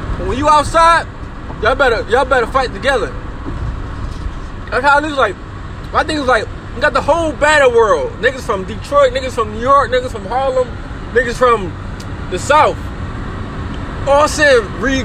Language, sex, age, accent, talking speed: English, male, 20-39, American, 160 wpm